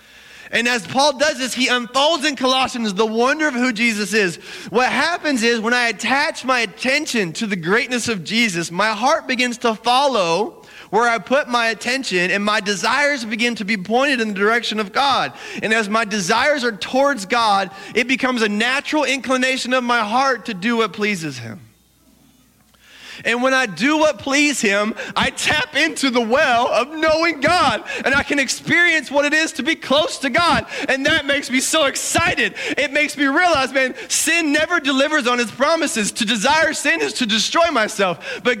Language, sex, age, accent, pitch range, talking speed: English, male, 30-49, American, 235-305 Hz, 190 wpm